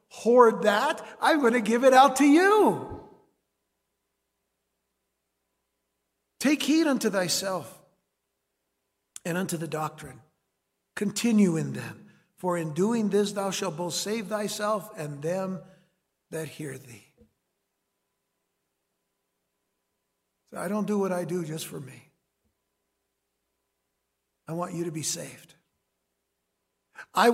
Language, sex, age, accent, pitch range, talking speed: English, male, 60-79, American, 150-195 Hz, 110 wpm